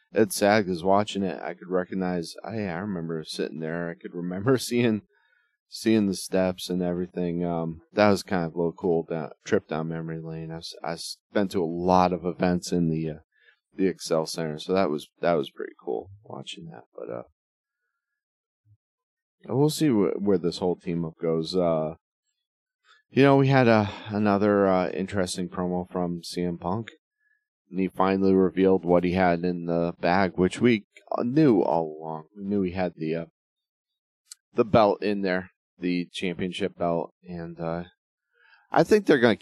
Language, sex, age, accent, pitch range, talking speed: English, male, 30-49, American, 85-105 Hz, 180 wpm